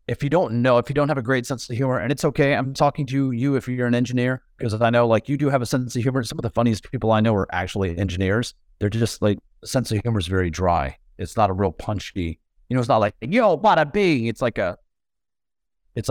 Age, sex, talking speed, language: 30-49, male, 270 wpm, English